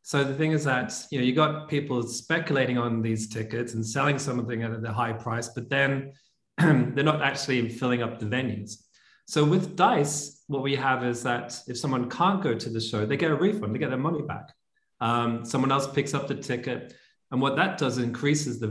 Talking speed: 215 wpm